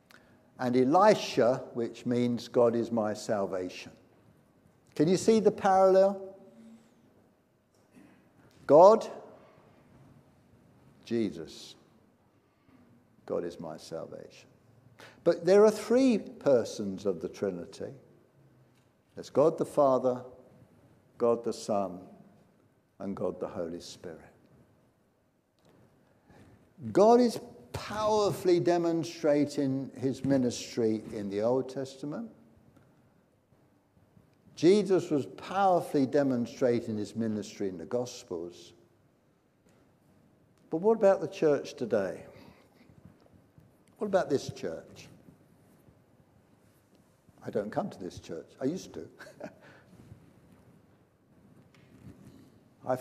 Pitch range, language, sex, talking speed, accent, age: 110-175 Hz, English, male, 90 wpm, British, 60-79